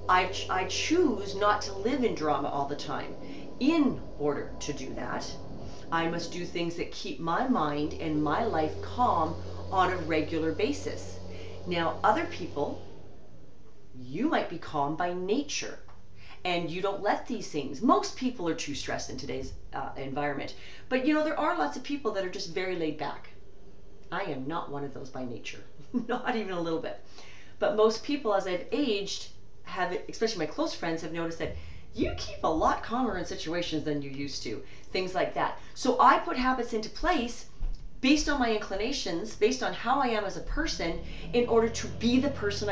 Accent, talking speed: American, 190 wpm